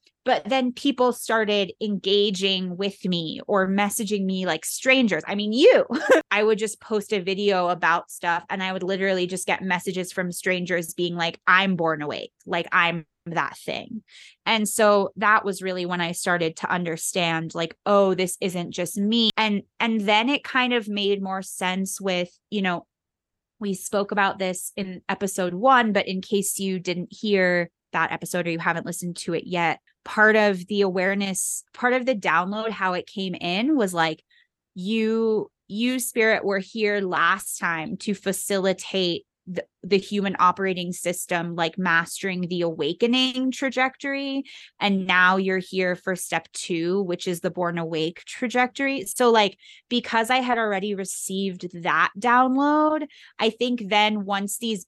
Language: English